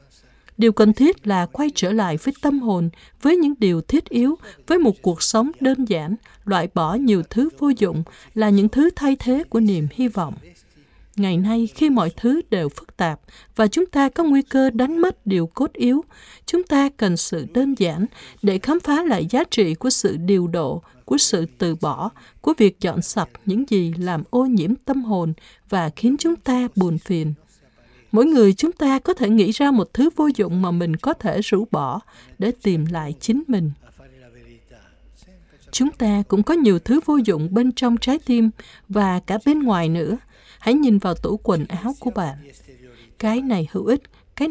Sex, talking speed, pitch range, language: female, 195 wpm, 175-265 Hz, Vietnamese